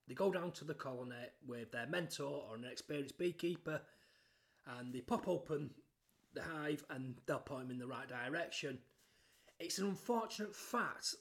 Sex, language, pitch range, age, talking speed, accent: male, English, 130-165 Hz, 30-49, 165 wpm, British